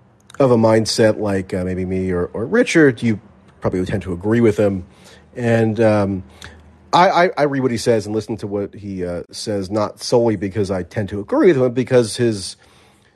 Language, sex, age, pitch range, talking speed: English, male, 40-59, 95-110 Hz, 210 wpm